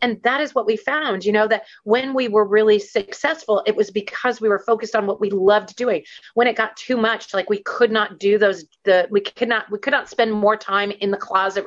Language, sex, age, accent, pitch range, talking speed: English, female, 30-49, American, 205-295 Hz, 250 wpm